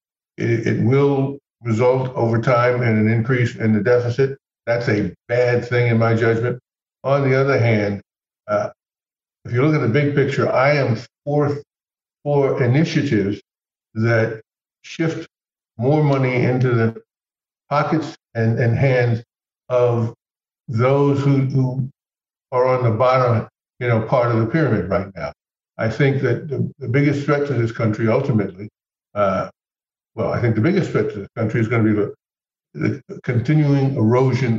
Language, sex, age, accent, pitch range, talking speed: English, male, 60-79, American, 110-135 Hz, 155 wpm